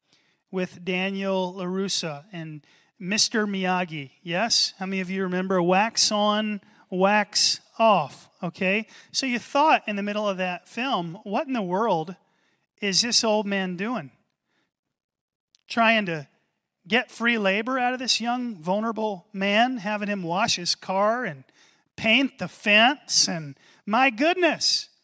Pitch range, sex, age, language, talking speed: 175-220 Hz, male, 30-49, English, 140 wpm